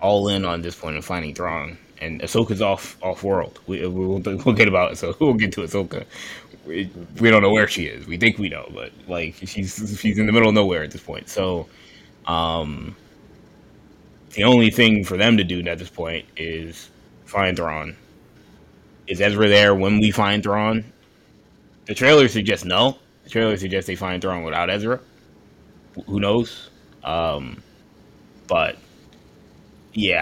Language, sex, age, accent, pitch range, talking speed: English, male, 20-39, American, 85-100 Hz, 175 wpm